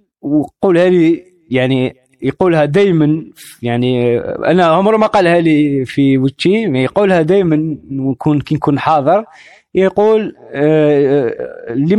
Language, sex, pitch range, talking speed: Arabic, male, 130-195 Hz, 100 wpm